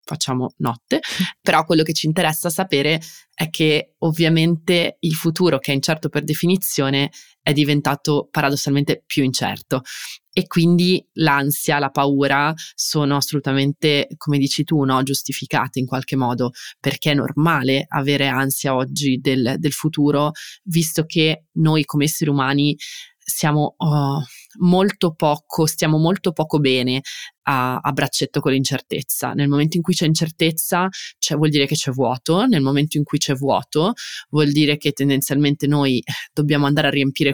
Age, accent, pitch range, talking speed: 20-39, native, 135-155 Hz, 150 wpm